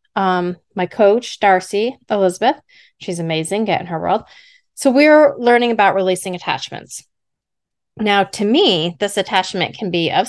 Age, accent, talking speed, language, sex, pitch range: 30-49, American, 140 wpm, English, female, 185-235 Hz